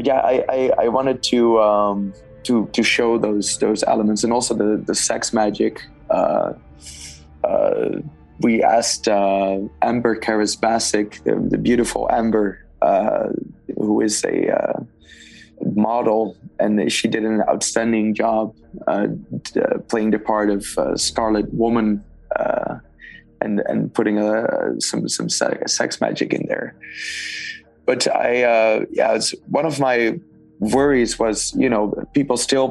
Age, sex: 20-39, male